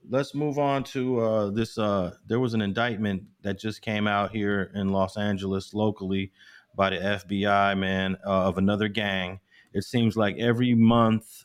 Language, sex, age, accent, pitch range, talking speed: English, male, 30-49, American, 100-120 Hz, 175 wpm